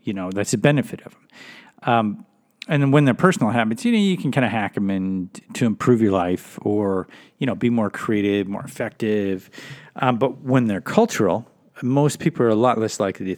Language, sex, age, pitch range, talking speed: English, male, 40-59, 100-135 Hz, 215 wpm